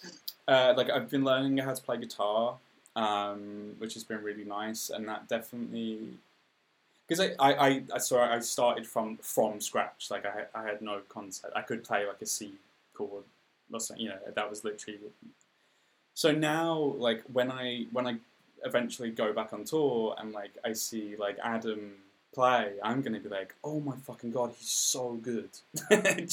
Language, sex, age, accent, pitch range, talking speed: English, male, 10-29, British, 105-130 Hz, 180 wpm